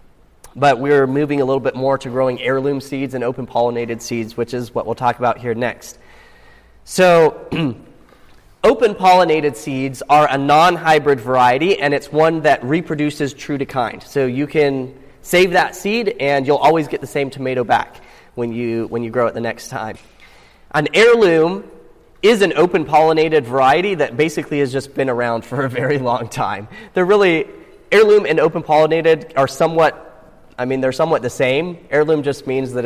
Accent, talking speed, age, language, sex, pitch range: American, 165 wpm, 30-49, English, male, 130-165 Hz